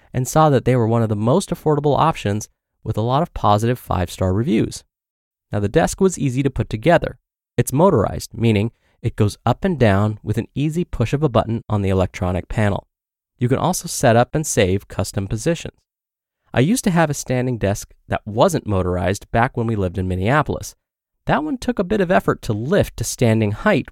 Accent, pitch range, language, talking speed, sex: American, 105-150 Hz, English, 205 wpm, male